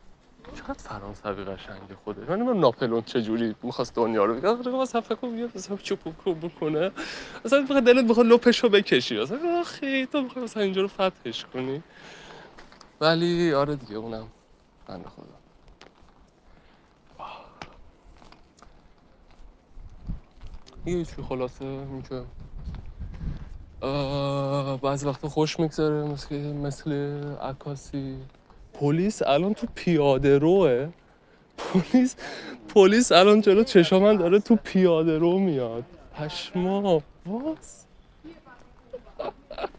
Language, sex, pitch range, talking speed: Persian, male, 125-190 Hz, 100 wpm